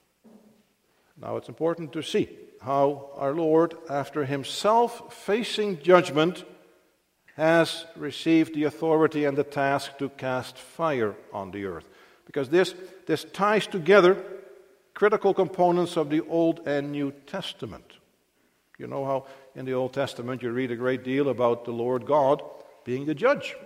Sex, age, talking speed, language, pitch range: male, 50-69, 145 wpm, English, 135-190 Hz